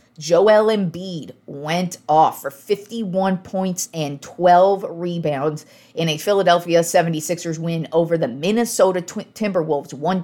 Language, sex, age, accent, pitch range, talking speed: English, female, 40-59, American, 155-185 Hz, 115 wpm